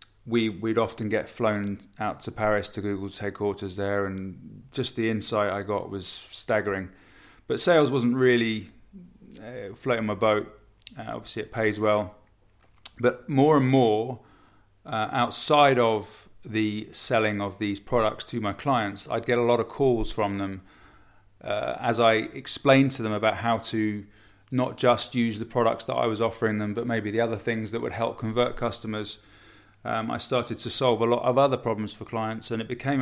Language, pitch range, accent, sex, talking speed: English, 105-120 Hz, British, male, 180 wpm